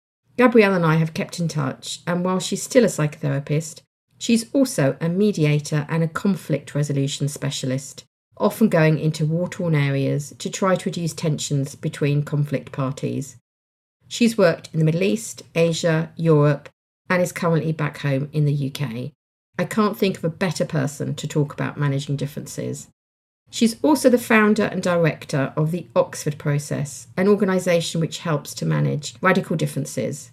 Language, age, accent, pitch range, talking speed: English, 50-69, British, 140-185 Hz, 160 wpm